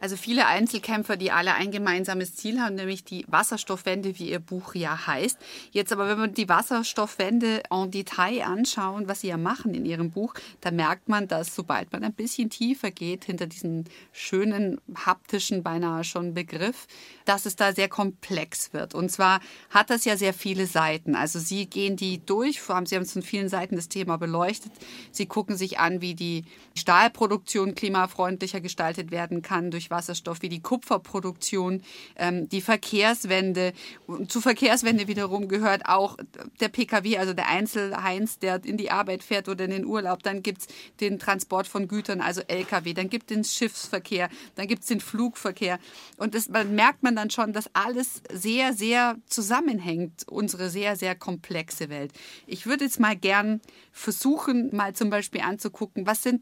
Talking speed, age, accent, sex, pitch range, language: 175 wpm, 30-49, German, female, 180-215 Hz, German